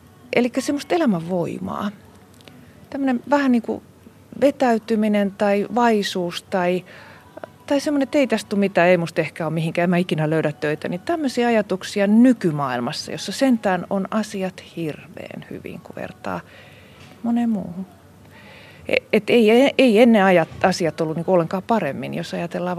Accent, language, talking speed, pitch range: native, Finnish, 135 wpm, 170-225 Hz